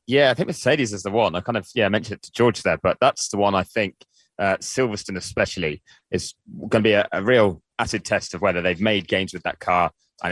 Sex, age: male, 20-39